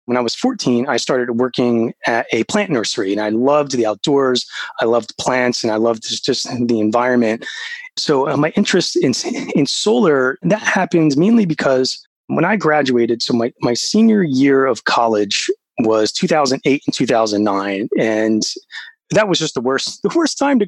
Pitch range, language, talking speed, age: 120-165 Hz, English, 175 wpm, 30-49